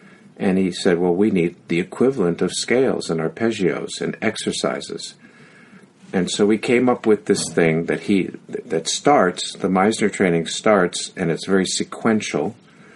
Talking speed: 155 wpm